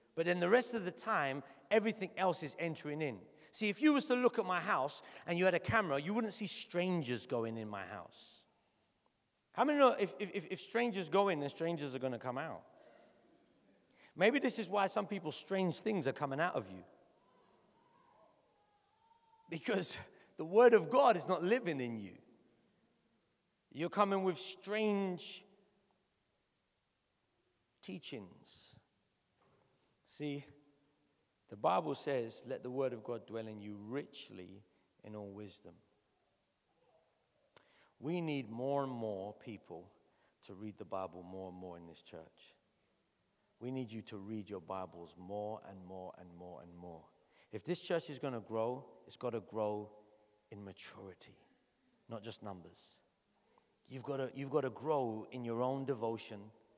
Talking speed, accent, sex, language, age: 155 wpm, British, male, English, 40-59